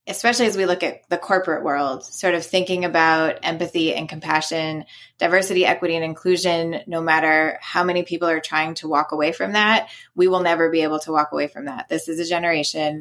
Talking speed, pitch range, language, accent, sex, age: 210 wpm, 155-175 Hz, English, American, female, 20-39